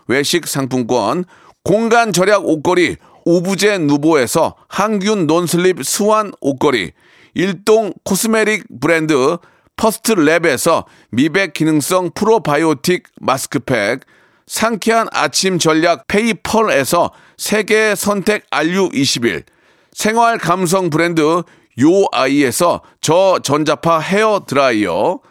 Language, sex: Korean, male